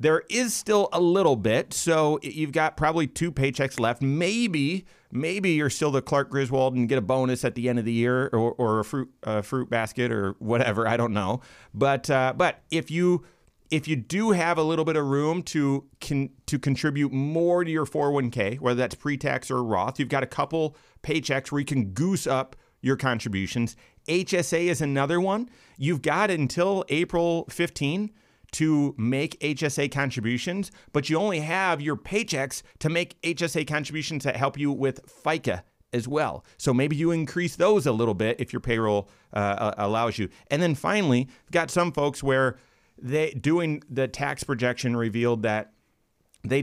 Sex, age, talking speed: male, 40-59, 185 wpm